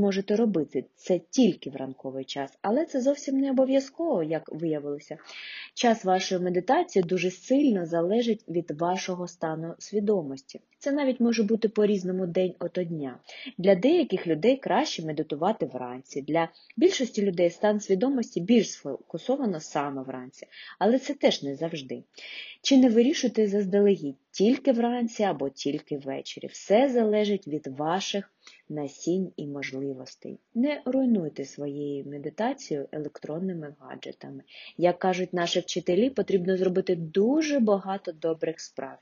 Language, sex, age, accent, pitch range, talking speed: Ukrainian, female, 20-39, native, 150-230 Hz, 130 wpm